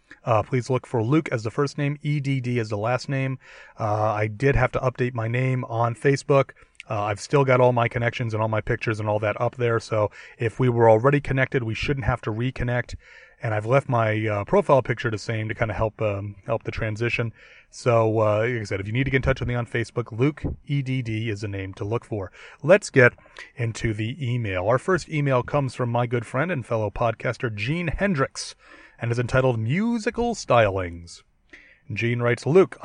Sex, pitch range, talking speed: male, 110-145 Hz, 215 wpm